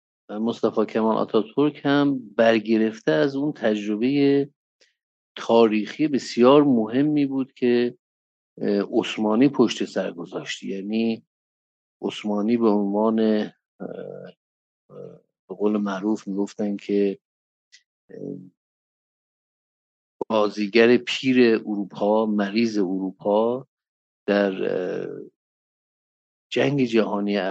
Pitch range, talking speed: 100-120 Hz, 75 wpm